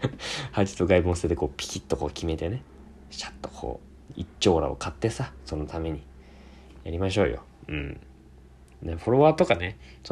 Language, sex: Japanese, male